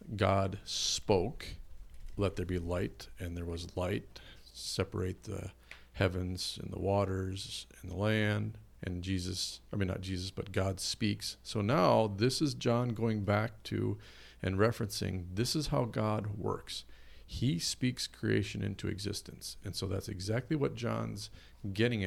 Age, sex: 40-59, male